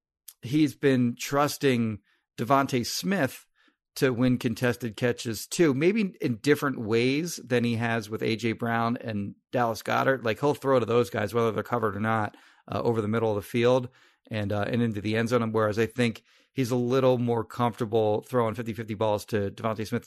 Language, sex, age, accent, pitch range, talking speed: English, male, 40-59, American, 110-130 Hz, 185 wpm